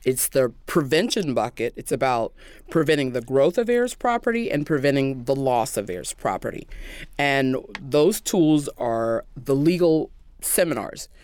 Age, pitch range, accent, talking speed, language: 30-49, 125-160 Hz, American, 140 wpm, English